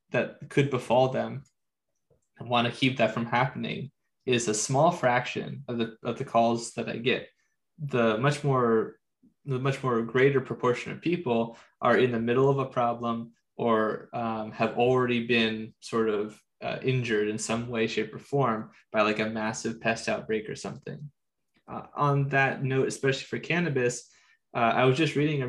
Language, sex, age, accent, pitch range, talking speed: English, male, 20-39, American, 115-130 Hz, 180 wpm